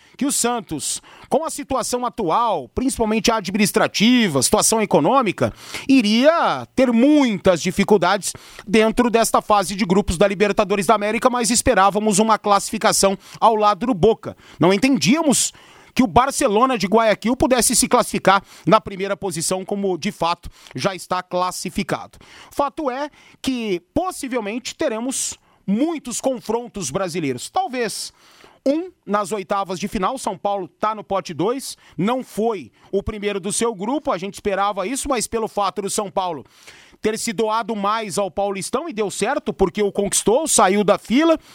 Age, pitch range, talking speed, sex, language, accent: 30-49, 195-245 Hz, 150 wpm, male, Portuguese, Brazilian